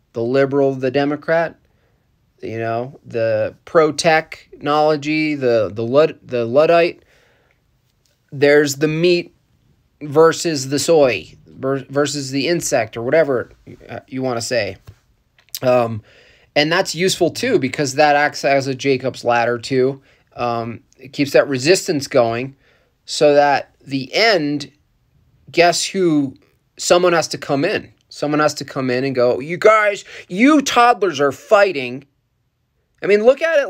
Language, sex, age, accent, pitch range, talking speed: English, male, 30-49, American, 125-160 Hz, 135 wpm